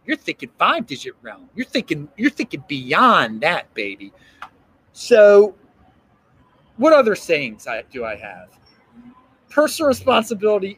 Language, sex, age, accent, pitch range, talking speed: English, male, 30-49, American, 180-265 Hz, 115 wpm